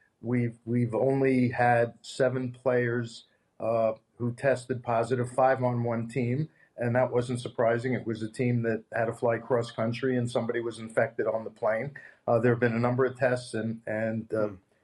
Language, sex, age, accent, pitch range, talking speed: English, male, 50-69, American, 120-130 Hz, 185 wpm